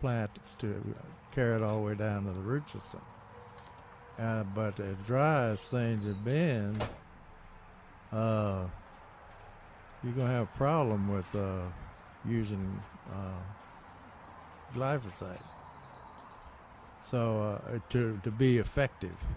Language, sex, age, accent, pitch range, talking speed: English, male, 60-79, American, 90-120 Hz, 120 wpm